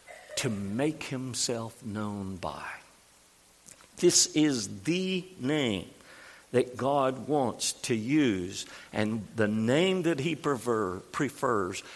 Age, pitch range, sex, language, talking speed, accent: 50-69, 115-165 Hz, male, English, 100 wpm, American